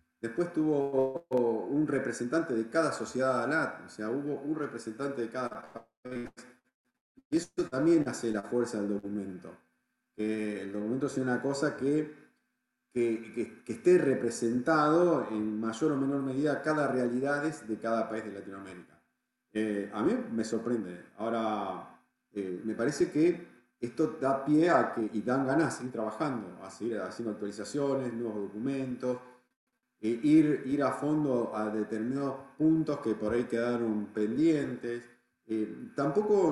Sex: male